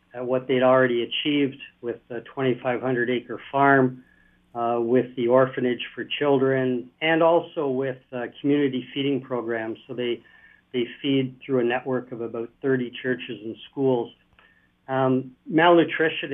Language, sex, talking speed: English, male, 135 wpm